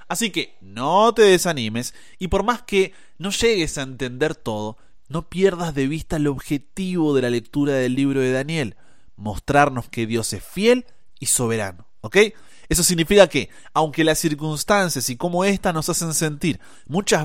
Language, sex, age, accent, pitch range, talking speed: Spanish, male, 30-49, Argentinian, 130-195 Hz, 165 wpm